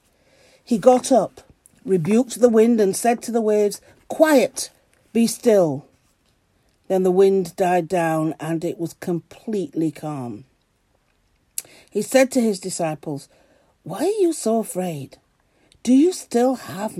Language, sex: English, female